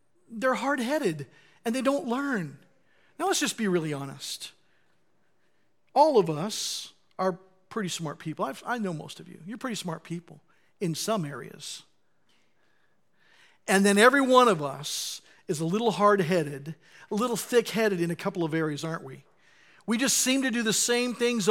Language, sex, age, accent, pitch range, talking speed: English, male, 50-69, American, 180-235 Hz, 165 wpm